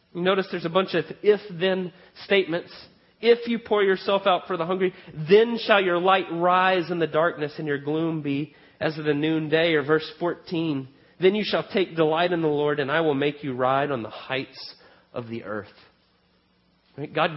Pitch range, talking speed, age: 150-190 Hz, 195 wpm, 40-59